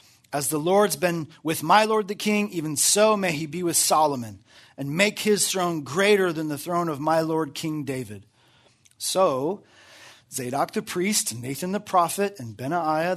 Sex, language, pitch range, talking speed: male, English, 140-185 Hz, 180 wpm